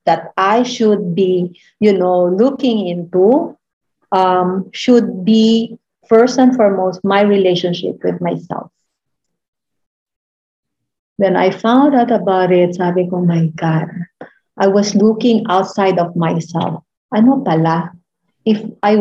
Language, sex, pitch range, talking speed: English, female, 175-215 Hz, 120 wpm